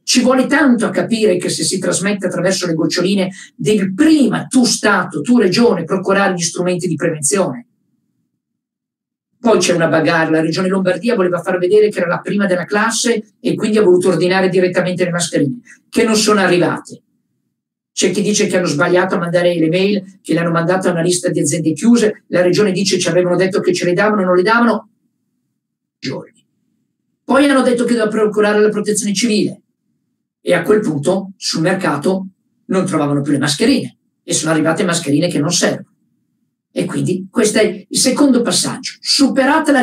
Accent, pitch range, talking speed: native, 180-235 Hz, 185 wpm